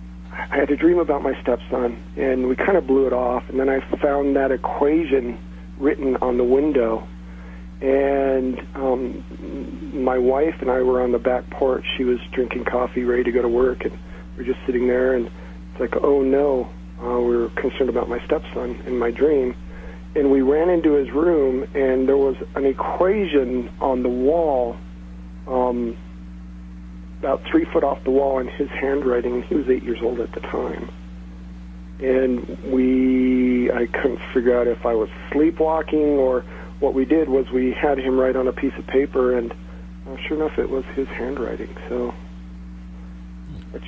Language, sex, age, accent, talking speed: English, male, 40-59, American, 180 wpm